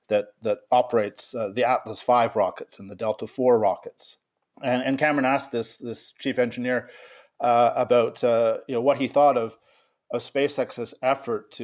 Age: 40-59